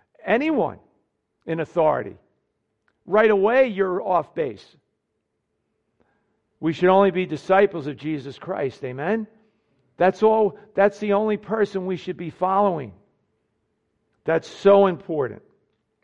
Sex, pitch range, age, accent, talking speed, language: male, 165-220 Hz, 50-69, American, 110 wpm, English